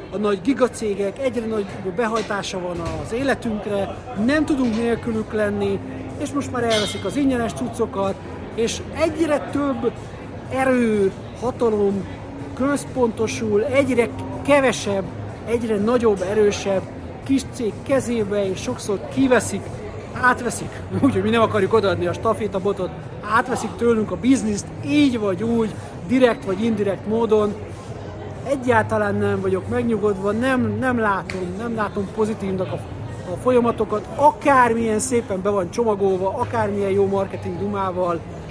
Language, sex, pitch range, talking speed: Hungarian, male, 190-235 Hz, 125 wpm